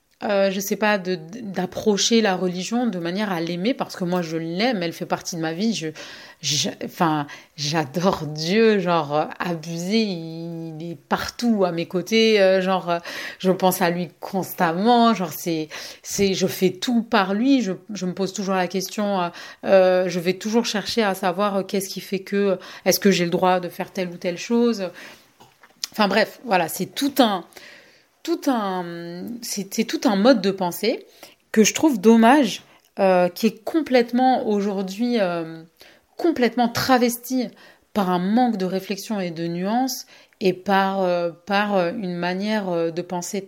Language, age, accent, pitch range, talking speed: French, 30-49, French, 180-220 Hz, 165 wpm